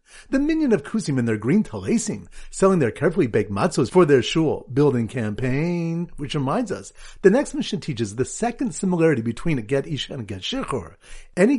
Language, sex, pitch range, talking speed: English, male, 135-205 Hz, 185 wpm